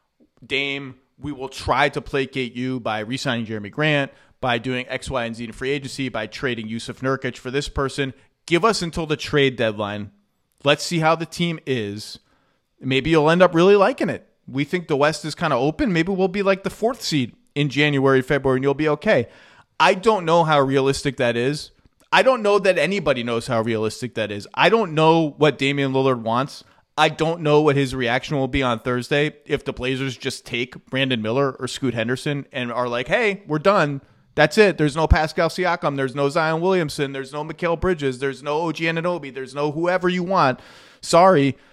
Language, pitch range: English, 130-165 Hz